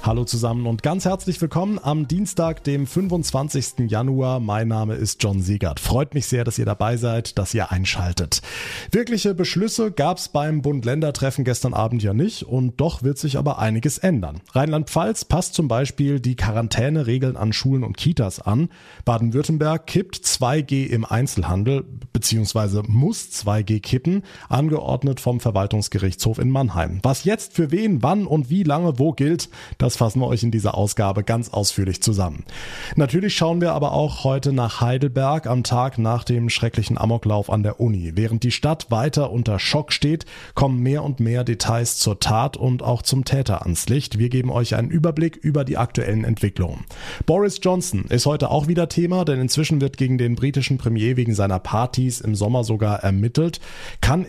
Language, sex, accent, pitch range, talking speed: German, male, German, 110-150 Hz, 170 wpm